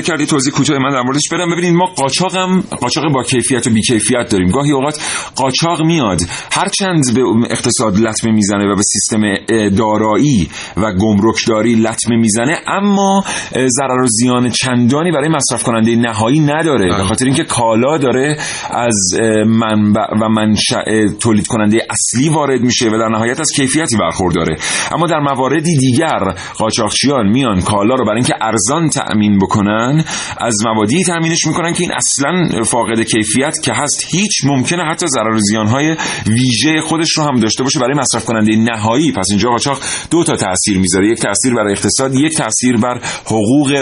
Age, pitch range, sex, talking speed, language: 40-59, 110-150 Hz, male, 165 wpm, Persian